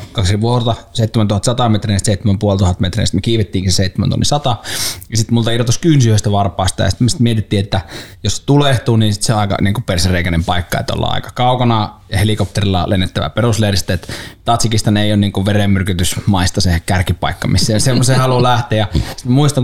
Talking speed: 170 wpm